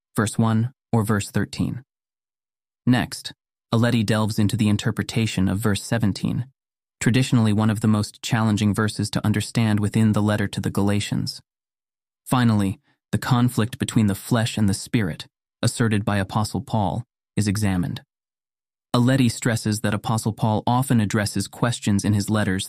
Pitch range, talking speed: 100-120 Hz, 145 wpm